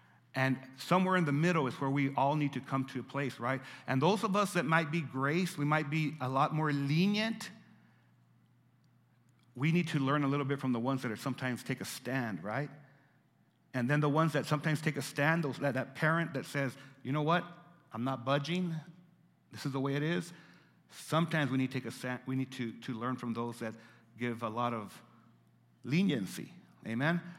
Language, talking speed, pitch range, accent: English, 210 wpm, 120-165 Hz, American